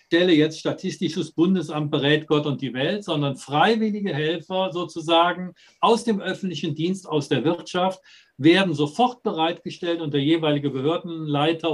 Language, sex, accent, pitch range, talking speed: German, male, German, 135-165 Hz, 140 wpm